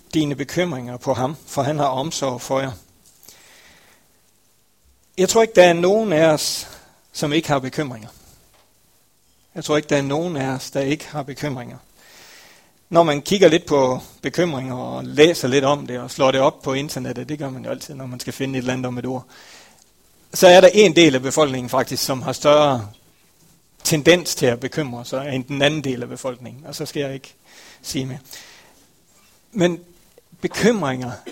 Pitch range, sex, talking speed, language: 125-170 Hz, male, 185 wpm, Danish